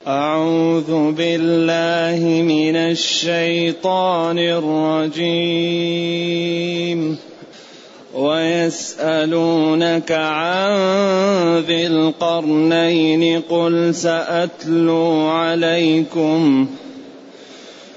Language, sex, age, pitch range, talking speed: English, male, 30-49, 160-175 Hz, 40 wpm